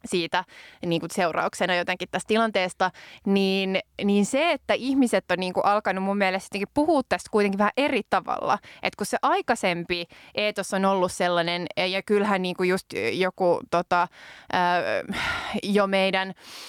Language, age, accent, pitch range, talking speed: Finnish, 20-39, native, 180-210 Hz, 140 wpm